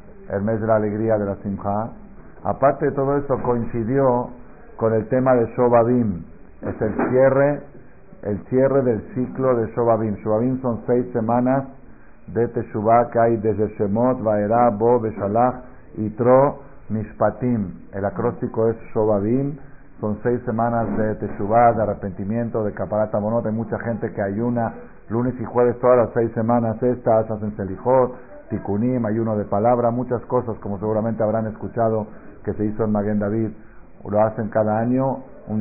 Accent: Spanish